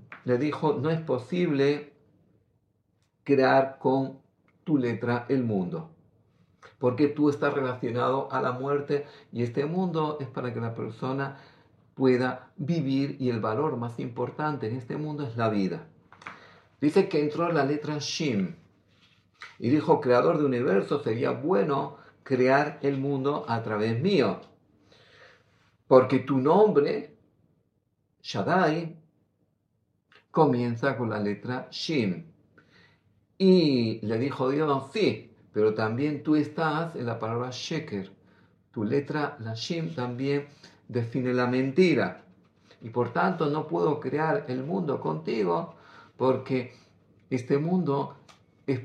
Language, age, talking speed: Greek, 50-69, 125 wpm